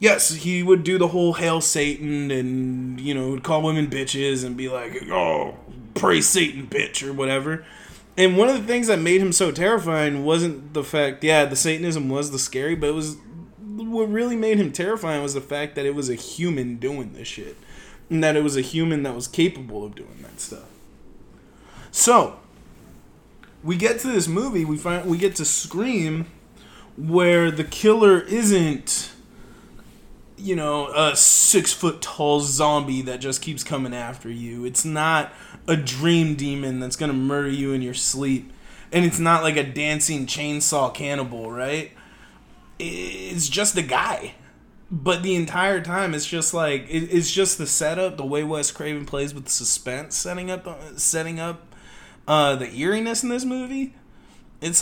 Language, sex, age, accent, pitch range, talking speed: English, male, 20-39, American, 140-175 Hz, 175 wpm